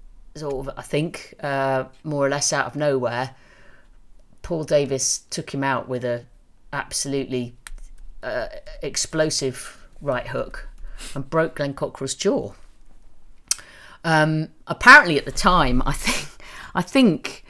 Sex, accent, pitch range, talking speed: female, British, 125-155 Hz, 125 wpm